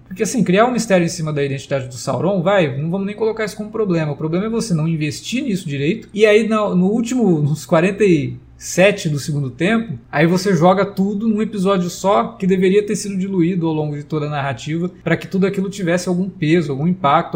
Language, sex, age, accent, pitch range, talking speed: Portuguese, male, 20-39, Brazilian, 150-190 Hz, 230 wpm